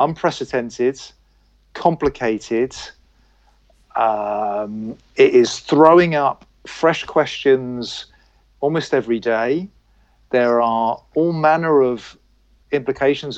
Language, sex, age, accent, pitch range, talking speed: English, male, 40-59, British, 115-155 Hz, 80 wpm